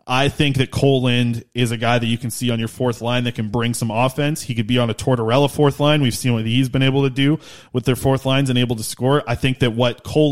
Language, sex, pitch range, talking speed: English, male, 115-140 Hz, 290 wpm